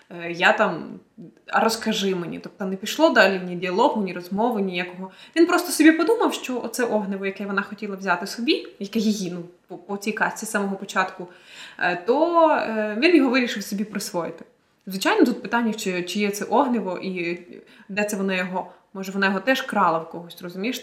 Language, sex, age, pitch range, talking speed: Ukrainian, female, 20-39, 185-230 Hz, 175 wpm